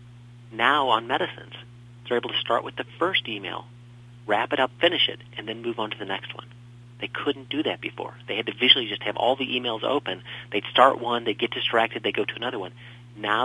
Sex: male